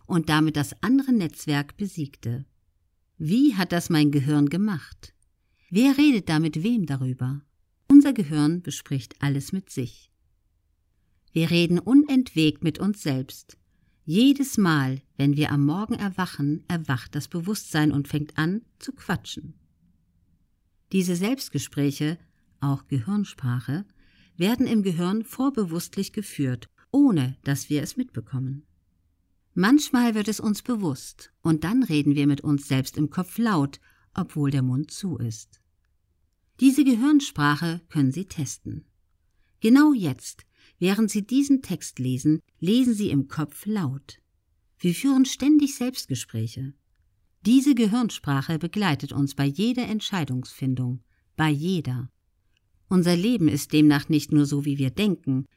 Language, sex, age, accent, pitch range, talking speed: German, female, 50-69, German, 130-195 Hz, 130 wpm